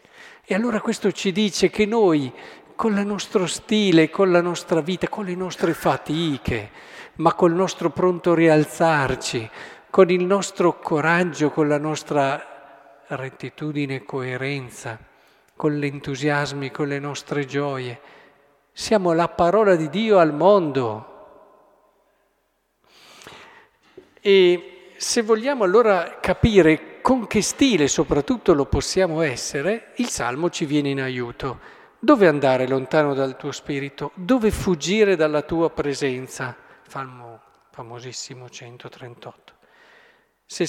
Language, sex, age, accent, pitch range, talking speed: Italian, male, 50-69, native, 140-190 Hz, 120 wpm